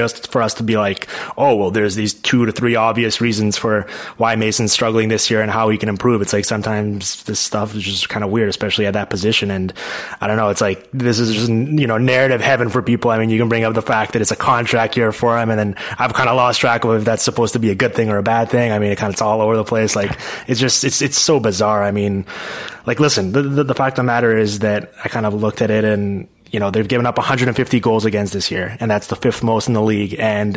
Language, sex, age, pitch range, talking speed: English, male, 20-39, 105-120 Hz, 285 wpm